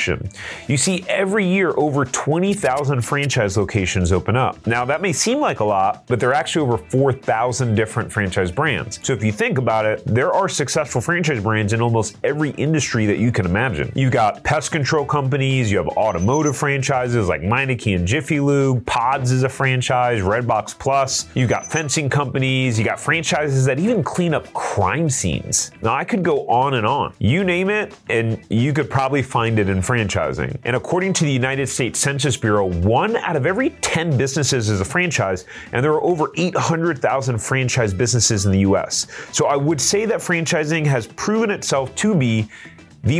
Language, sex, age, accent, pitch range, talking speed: English, male, 30-49, American, 115-155 Hz, 190 wpm